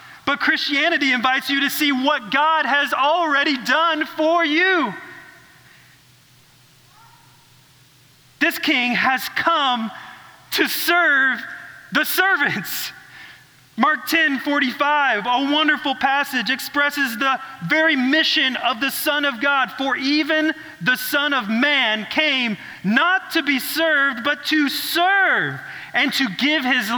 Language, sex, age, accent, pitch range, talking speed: English, male, 40-59, American, 235-295 Hz, 120 wpm